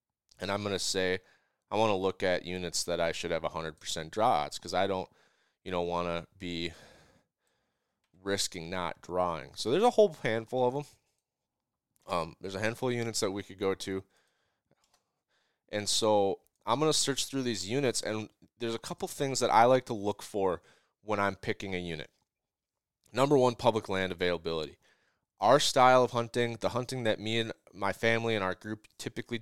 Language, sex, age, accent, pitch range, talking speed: English, male, 20-39, American, 95-120 Hz, 190 wpm